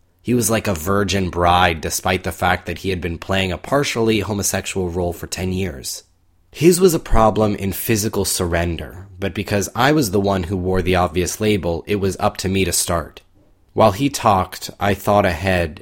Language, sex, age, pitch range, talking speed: English, male, 20-39, 85-100 Hz, 195 wpm